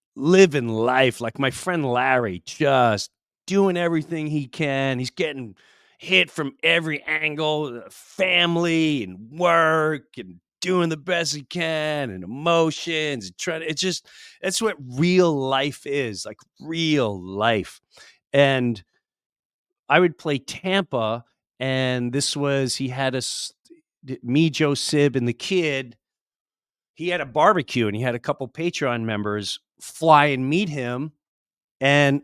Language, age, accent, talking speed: English, 40-59, American, 140 wpm